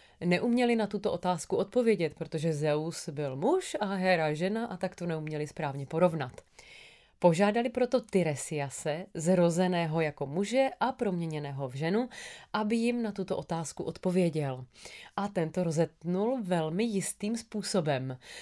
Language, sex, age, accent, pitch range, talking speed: Czech, female, 30-49, native, 165-210 Hz, 130 wpm